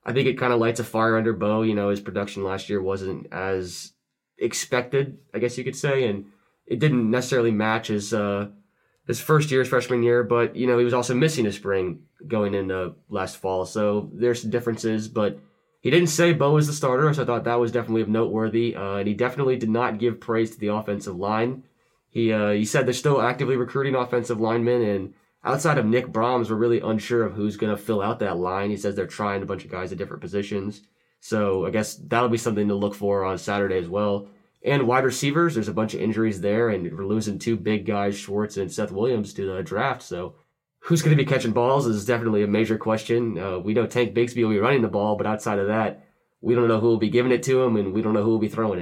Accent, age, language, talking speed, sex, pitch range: American, 20-39, English, 240 wpm, male, 100-120 Hz